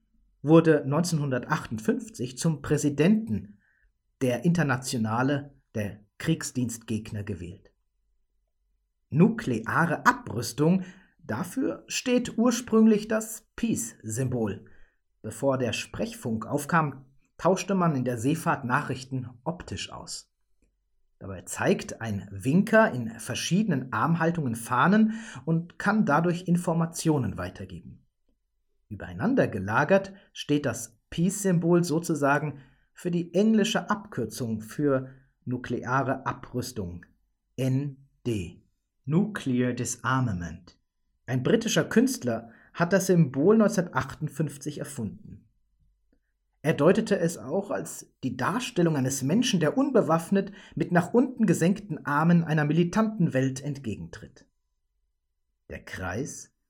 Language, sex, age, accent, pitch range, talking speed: German, male, 40-59, German, 120-175 Hz, 90 wpm